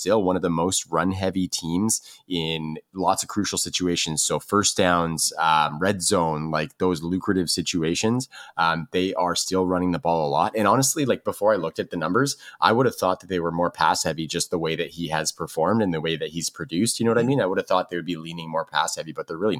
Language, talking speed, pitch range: English, 255 wpm, 80-95 Hz